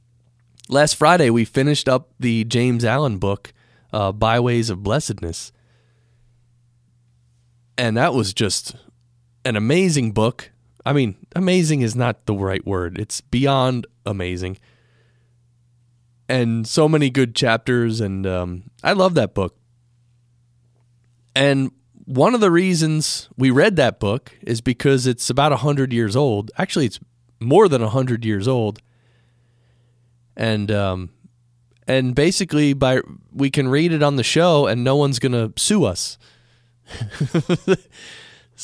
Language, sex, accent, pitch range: English, male, American, 115-135 Hz